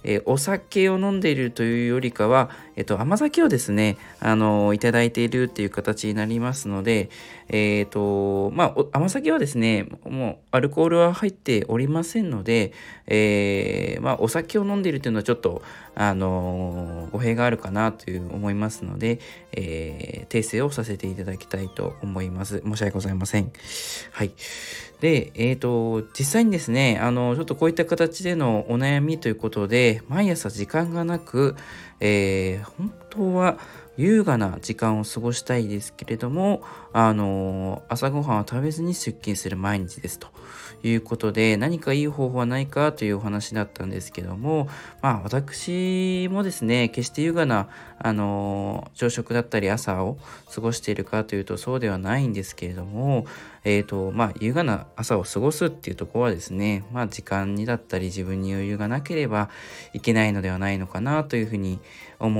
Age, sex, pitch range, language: 20-39, male, 100-140 Hz, Japanese